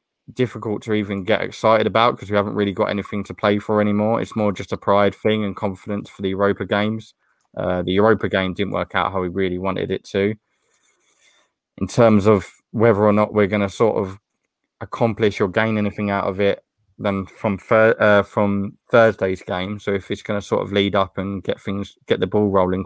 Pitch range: 100-110 Hz